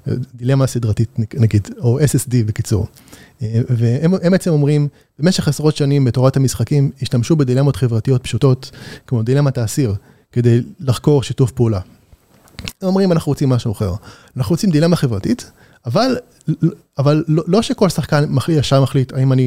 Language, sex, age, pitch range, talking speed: Hebrew, male, 30-49, 125-155 Hz, 140 wpm